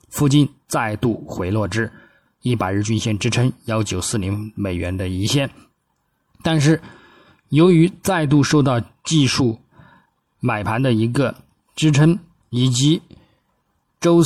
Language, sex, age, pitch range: Chinese, male, 20-39, 100-130 Hz